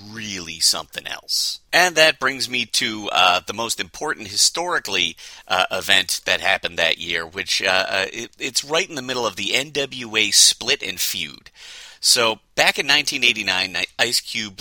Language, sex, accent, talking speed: English, male, American, 165 wpm